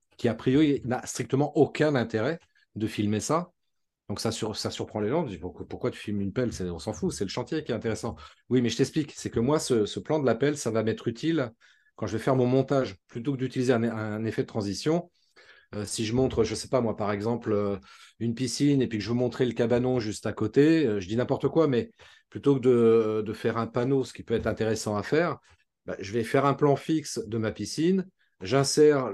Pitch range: 110-135 Hz